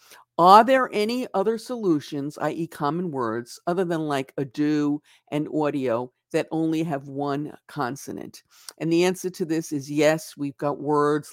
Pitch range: 135-160 Hz